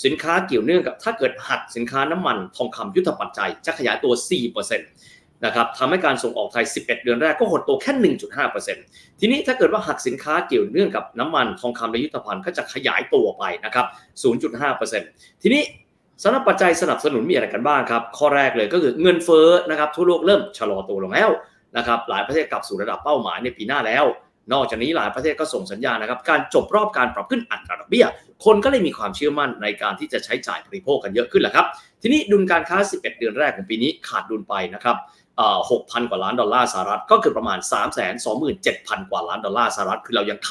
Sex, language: male, Thai